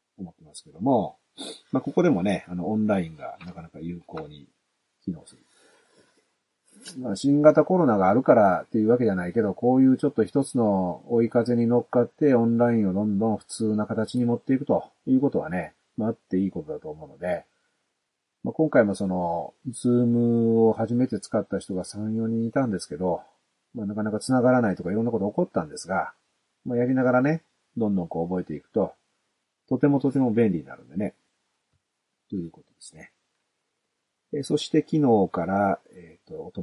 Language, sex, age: Japanese, male, 40-59